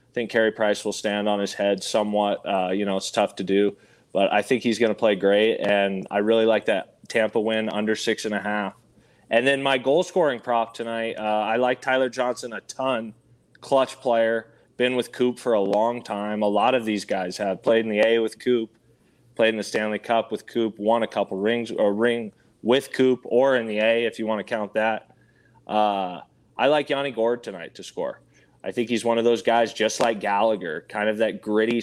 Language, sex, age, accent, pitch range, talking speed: English, male, 20-39, American, 105-120 Hz, 220 wpm